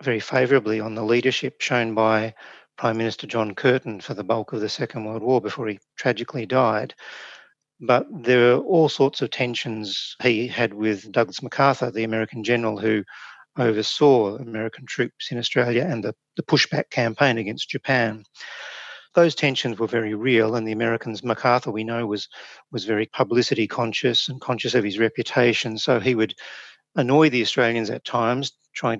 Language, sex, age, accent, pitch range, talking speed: English, male, 40-59, Australian, 110-135 Hz, 170 wpm